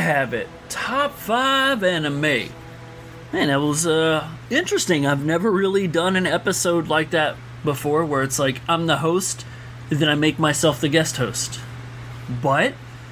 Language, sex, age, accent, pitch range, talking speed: English, male, 30-49, American, 140-230 Hz, 155 wpm